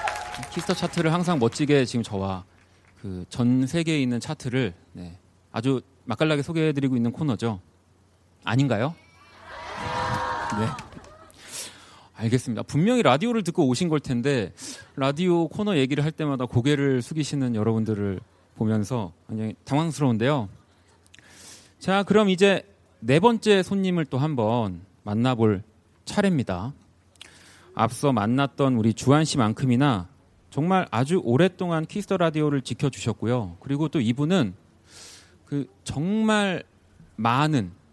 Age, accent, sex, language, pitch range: 30-49, native, male, Korean, 105-170 Hz